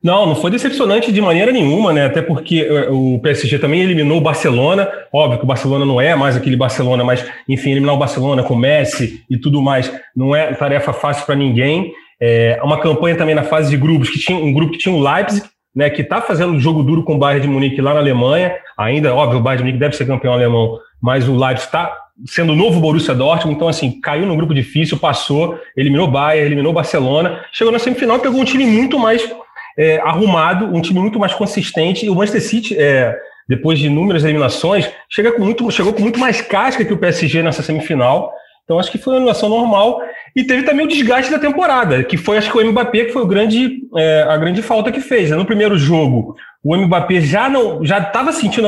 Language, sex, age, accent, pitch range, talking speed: Portuguese, male, 30-49, Brazilian, 140-205 Hz, 225 wpm